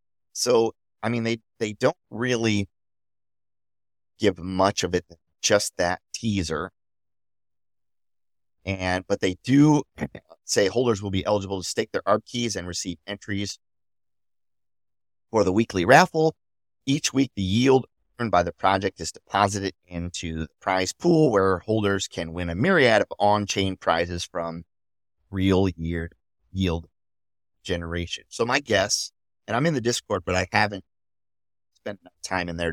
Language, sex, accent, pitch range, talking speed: English, male, American, 90-115 Hz, 145 wpm